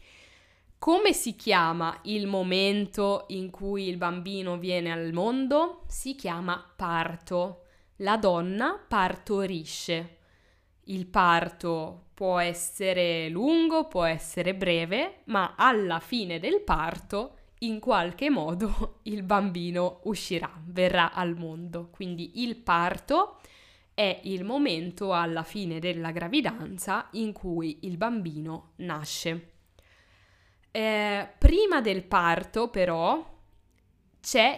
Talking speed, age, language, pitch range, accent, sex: 105 wpm, 20-39, Italian, 165-210 Hz, native, female